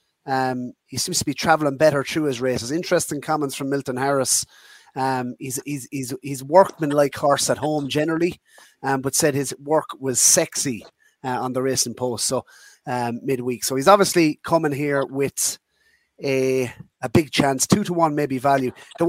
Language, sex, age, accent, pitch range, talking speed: English, male, 30-49, Irish, 130-160 Hz, 175 wpm